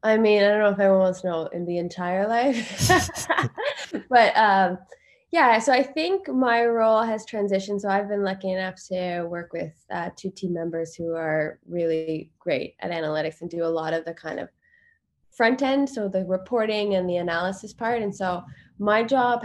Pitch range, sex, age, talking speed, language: 175-205 Hz, female, 20-39, 195 wpm, English